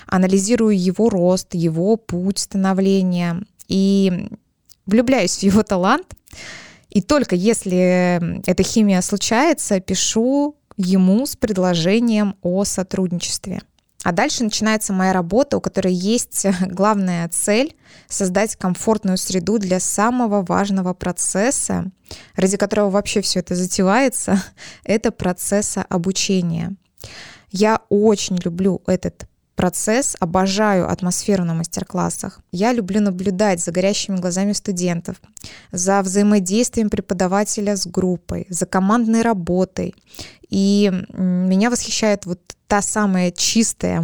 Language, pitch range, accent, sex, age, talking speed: Russian, 180-210 Hz, native, female, 20-39, 110 wpm